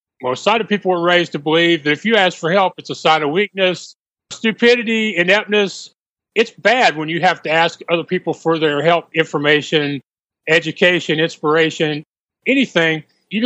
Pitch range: 155-205 Hz